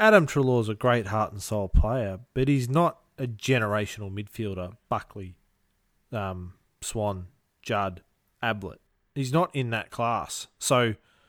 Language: English